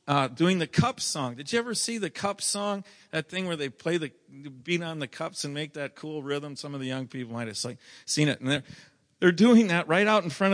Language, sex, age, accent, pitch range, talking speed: English, male, 50-69, American, 145-185 Hz, 255 wpm